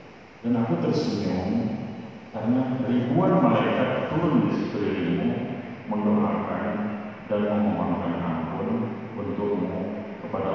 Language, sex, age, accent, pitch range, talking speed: Indonesian, male, 50-69, native, 80-110 Hz, 90 wpm